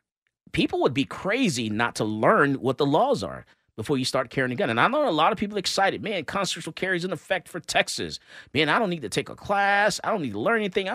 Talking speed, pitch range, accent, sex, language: 270 wpm, 140-205 Hz, American, male, English